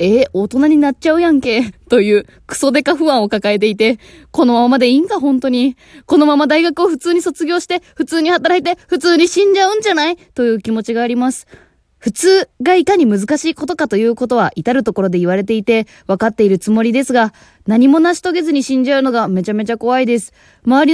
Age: 20-39